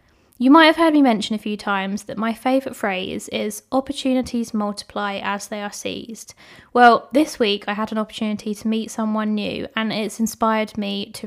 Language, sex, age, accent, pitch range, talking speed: English, female, 20-39, British, 215-250 Hz, 190 wpm